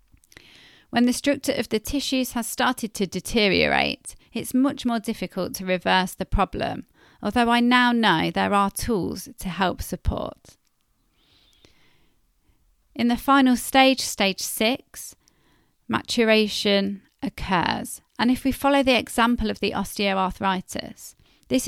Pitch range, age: 200-250 Hz, 40-59